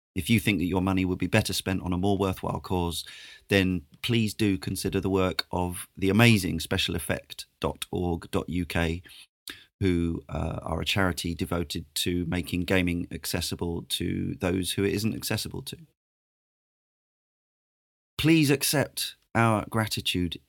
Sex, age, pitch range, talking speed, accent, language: male, 30-49, 90-110 Hz, 135 wpm, British, English